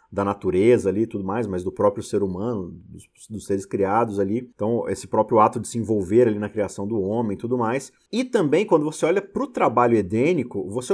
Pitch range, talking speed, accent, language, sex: 110-155 Hz, 225 wpm, Brazilian, Portuguese, male